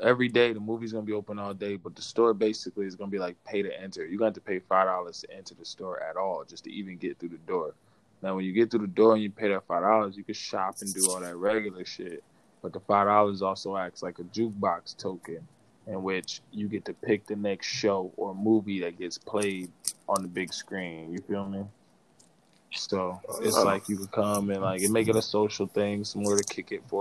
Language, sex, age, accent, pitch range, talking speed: English, male, 20-39, American, 95-105 Hz, 250 wpm